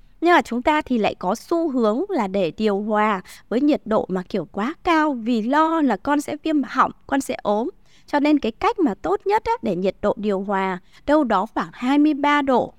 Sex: female